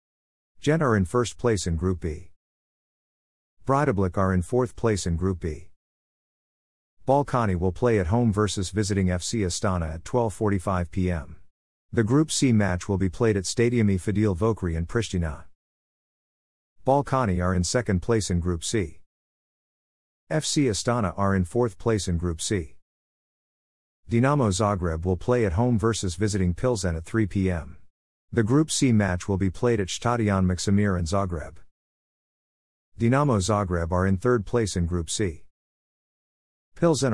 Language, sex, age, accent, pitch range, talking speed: English, male, 50-69, American, 85-115 Hz, 145 wpm